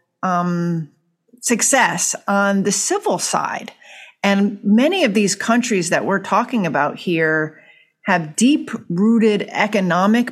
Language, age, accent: English, 40-59, American